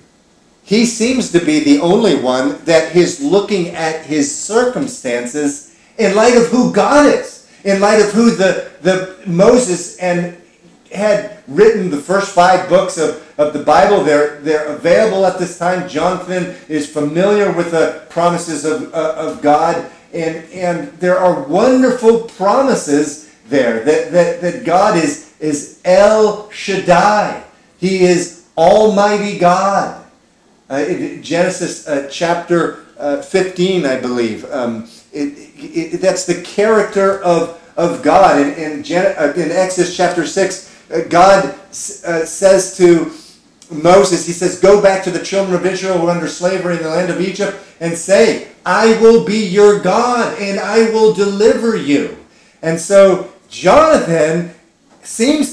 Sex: male